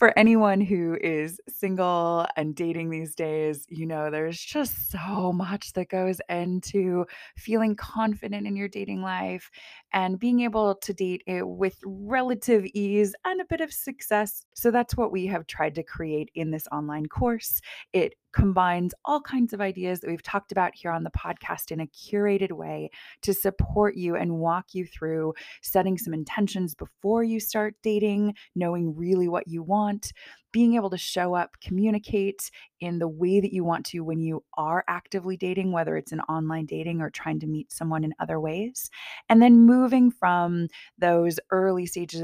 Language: English